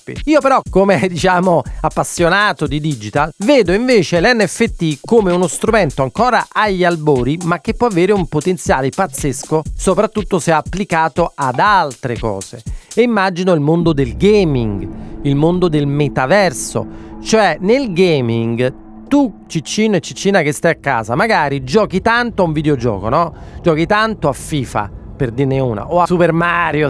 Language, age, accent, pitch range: Italian, 40-59, native, 130-185 Hz